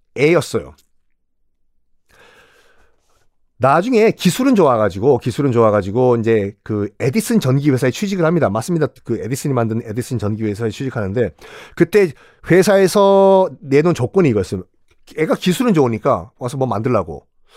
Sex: male